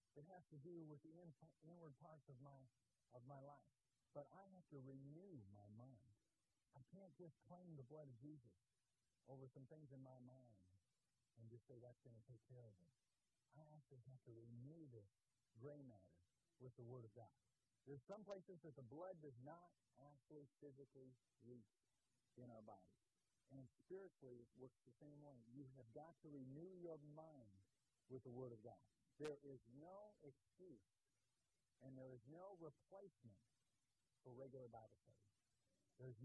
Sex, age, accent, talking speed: male, 50-69, American, 175 wpm